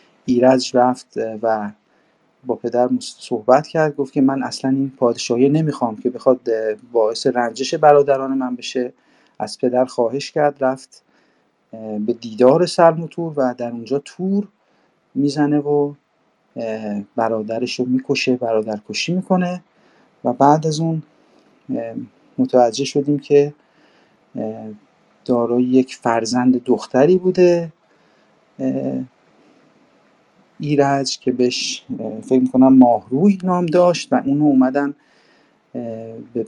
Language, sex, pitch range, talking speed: Persian, male, 120-145 Hz, 105 wpm